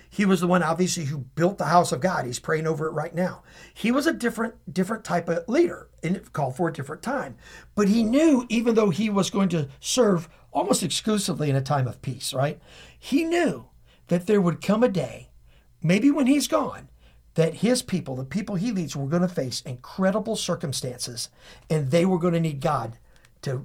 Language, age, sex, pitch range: English, 50-69, male, 135-225 Hz